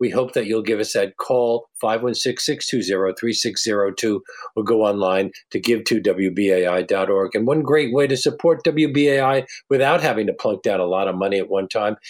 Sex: male